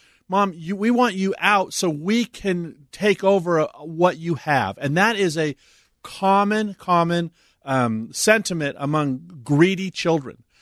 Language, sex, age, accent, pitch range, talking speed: English, male, 40-59, American, 130-185 Hz, 135 wpm